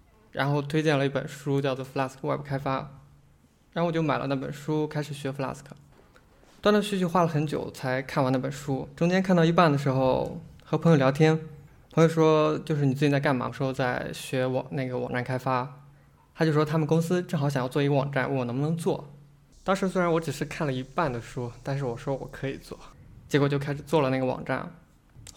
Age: 20-39